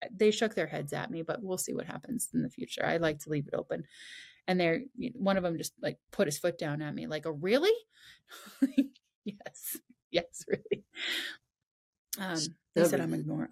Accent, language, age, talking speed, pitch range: American, English, 30-49, 205 wpm, 165-215 Hz